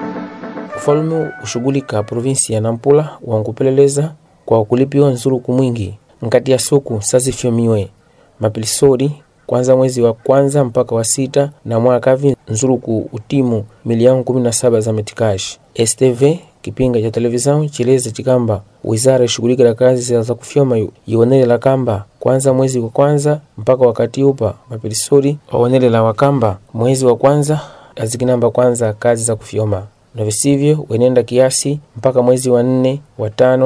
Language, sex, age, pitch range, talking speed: Portuguese, male, 30-49, 115-130 Hz, 130 wpm